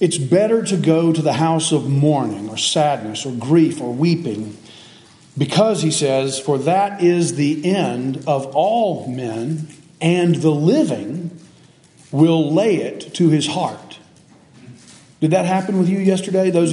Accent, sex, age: American, male, 40-59